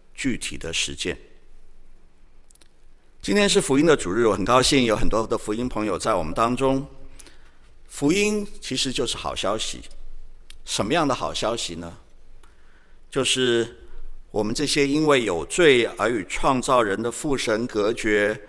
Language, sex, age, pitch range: Chinese, male, 50-69, 105-135 Hz